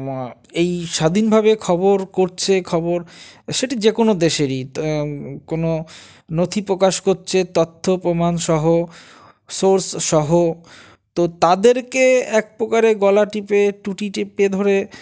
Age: 20-39